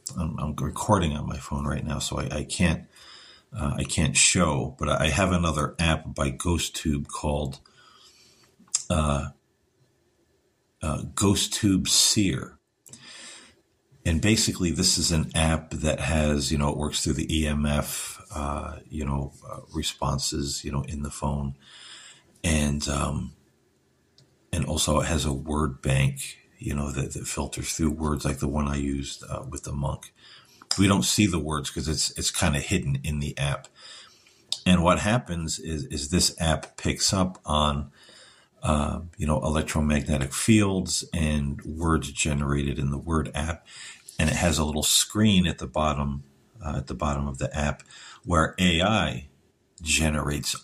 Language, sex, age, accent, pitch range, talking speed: English, male, 50-69, American, 70-80 Hz, 160 wpm